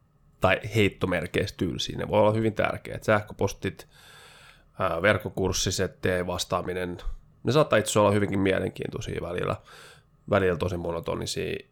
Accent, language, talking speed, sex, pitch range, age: native, Finnish, 115 wpm, male, 90-110 Hz, 20-39